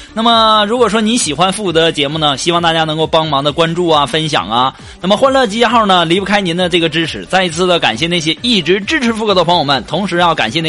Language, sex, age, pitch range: Chinese, male, 20-39, 160-230 Hz